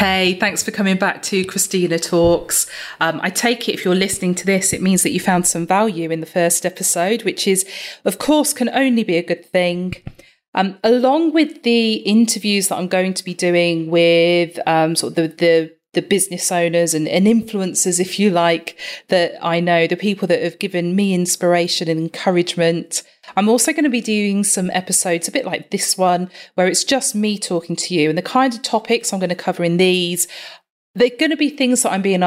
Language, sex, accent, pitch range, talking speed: English, female, British, 170-200 Hz, 215 wpm